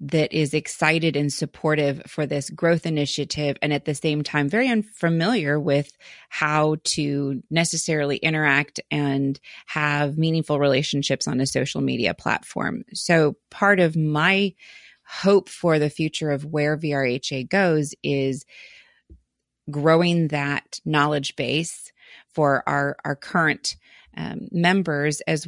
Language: English